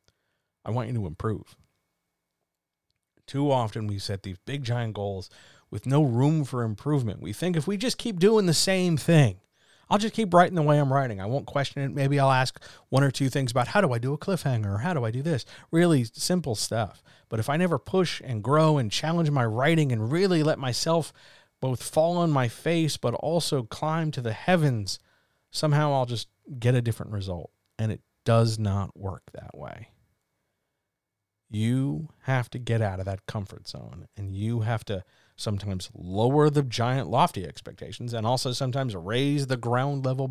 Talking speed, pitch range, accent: 190 wpm, 105-145 Hz, American